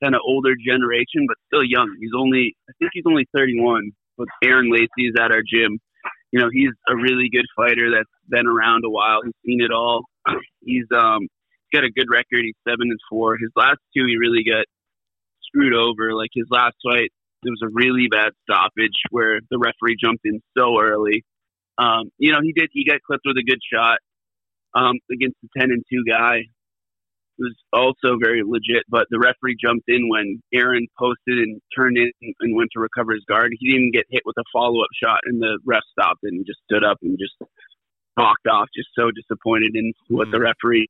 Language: English